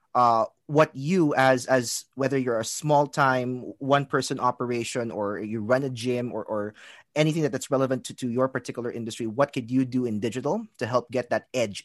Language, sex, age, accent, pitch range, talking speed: English, male, 30-49, Filipino, 115-145 Hz, 210 wpm